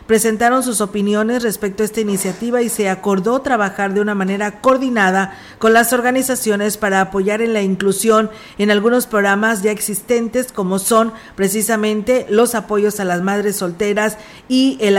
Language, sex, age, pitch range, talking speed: Spanish, female, 40-59, 200-230 Hz, 155 wpm